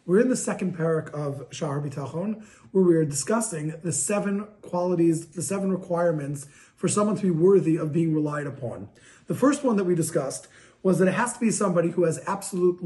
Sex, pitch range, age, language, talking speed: male, 165-210 Hz, 30-49, English, 195 wpm